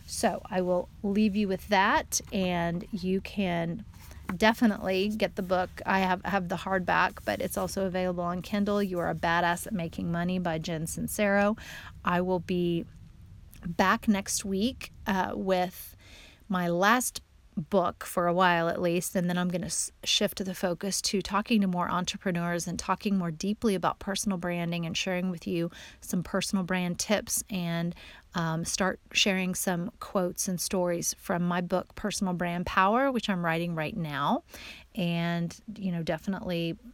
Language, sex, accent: English, female, American